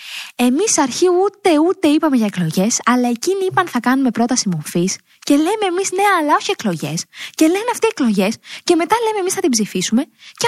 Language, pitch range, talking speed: Greek, 205-325 Hz, 195 wpm